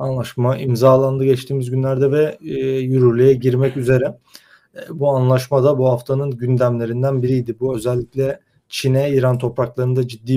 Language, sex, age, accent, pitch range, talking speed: Turkish, male, 30-49, native, 120-130 Hz, 120 wpm